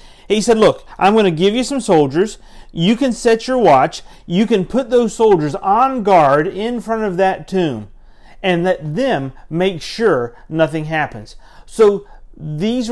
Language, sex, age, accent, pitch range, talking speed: English, male, 40-59, American, 120-185 Hz, 165 wpm